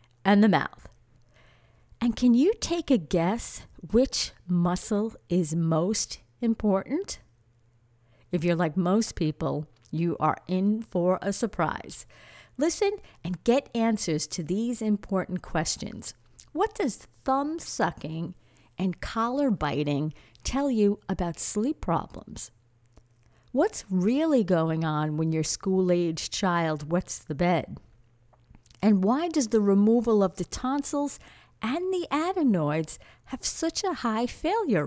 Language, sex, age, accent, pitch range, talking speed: English, female, 50-69, American, 160-230 Hz, 125 wpm